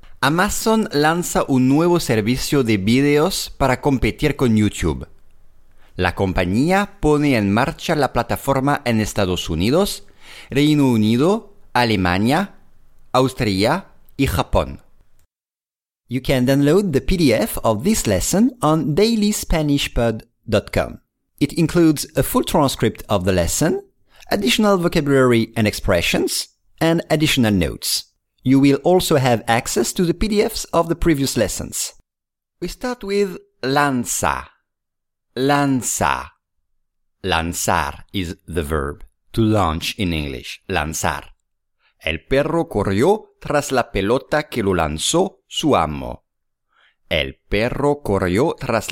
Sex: male